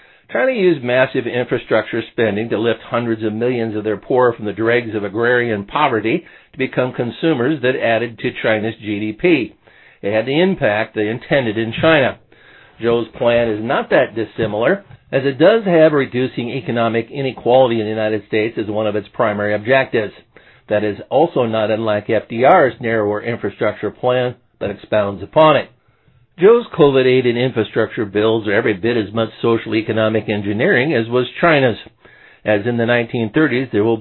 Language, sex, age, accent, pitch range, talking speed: English, male, 50-69, American, 110-130 Hz, 165 wpm